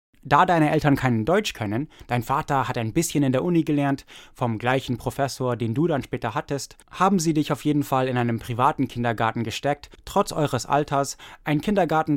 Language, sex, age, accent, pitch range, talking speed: English, male, 20-39, German, 115-155 Hz, 190 wpm